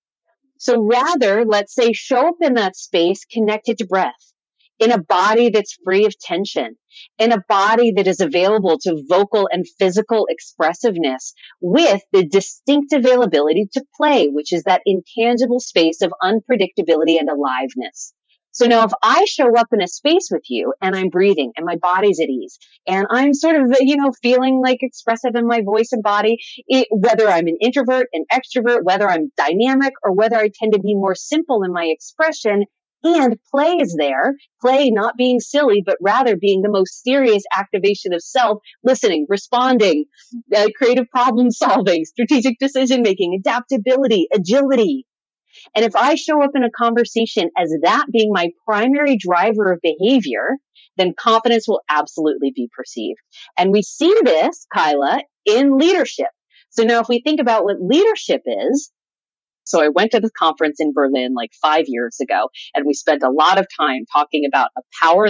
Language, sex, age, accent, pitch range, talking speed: English, female, 40-59, American, 185-260 Hz, 170 wpm